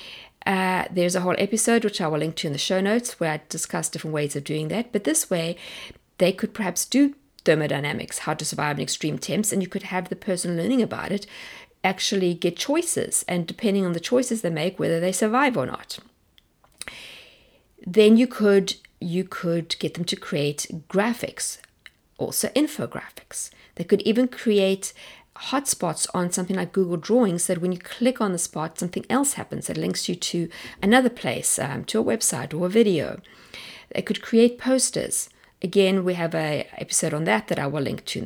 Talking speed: 190 wpm